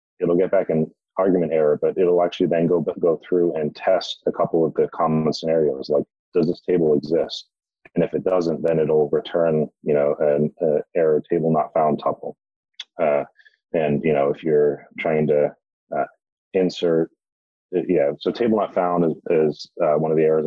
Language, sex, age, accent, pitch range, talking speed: English, male, 30-49, American, 75-95 Hz, 190 wpm